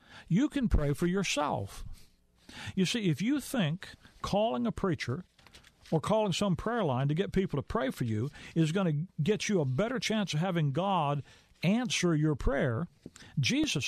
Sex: male